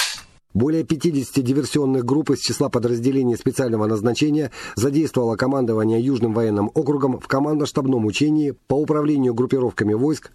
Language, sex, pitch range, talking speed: Russian, male, 115-145 Hz, 120 wpm